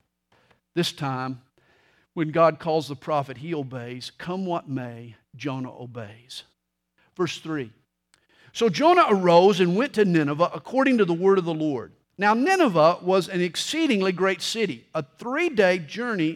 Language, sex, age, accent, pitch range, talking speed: English, male, 50-69, American, 150-215 Hz, 145 wpm